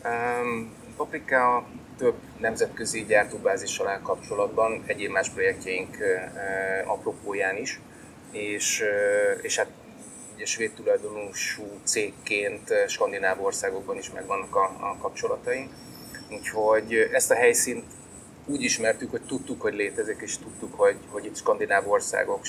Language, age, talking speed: Hungarian, 30-49, 125 wpm